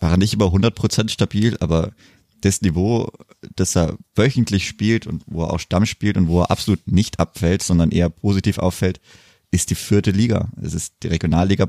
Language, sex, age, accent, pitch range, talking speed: German, male, 20-39, German, 85-100 Hz, 190 wpm